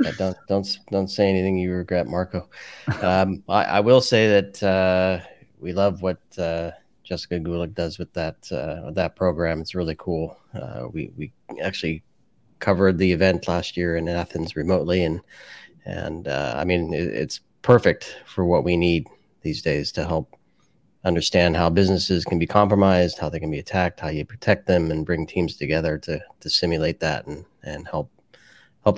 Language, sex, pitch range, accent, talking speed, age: English, male, 85-100 Hz, American, 180 wpm, 30-49